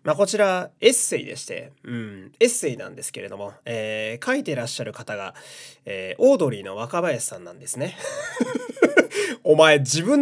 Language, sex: Japanese, male